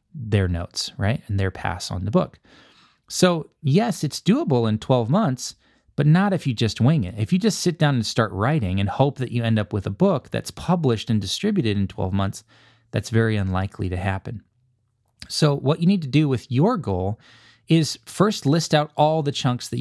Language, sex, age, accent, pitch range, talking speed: English, male, 20-39, American, 110-150 Hz, 210 wpm